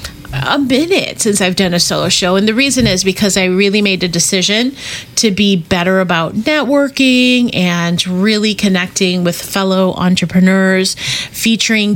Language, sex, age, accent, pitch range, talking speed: English, female, 30-49, American, 180-215 Hz, 150 wpm